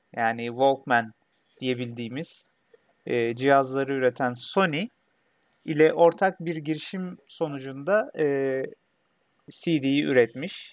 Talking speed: 75 wpm